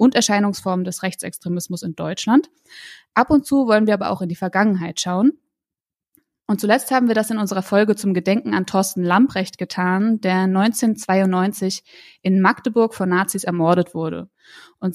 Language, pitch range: German, 185-230 Hz